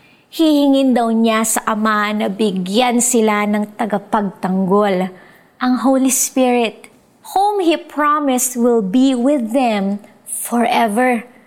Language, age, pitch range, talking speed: Filipino, 20-39, 215-295 Hz, 110 wpm